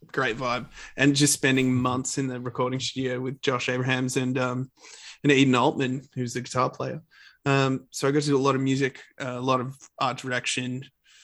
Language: English